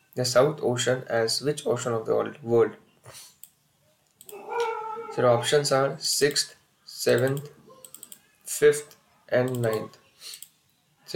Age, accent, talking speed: 20-39, Indian, 95 wpm